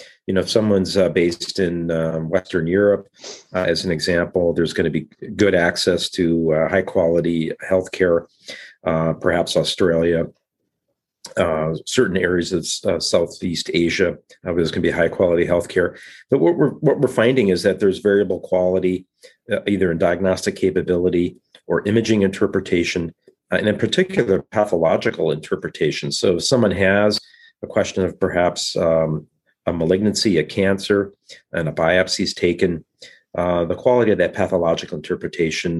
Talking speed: 160 wpm